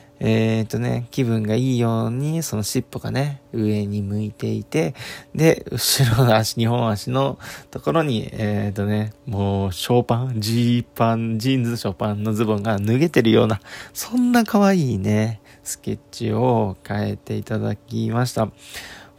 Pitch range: 105-140 Hz